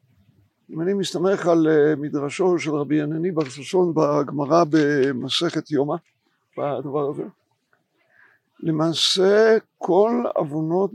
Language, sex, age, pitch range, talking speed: Hebrew, male, 60-79, 160-210 Hz, 100 wpm